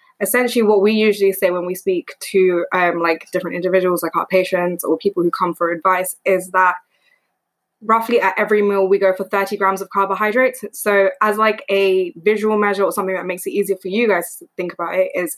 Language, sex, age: English, female, 20-39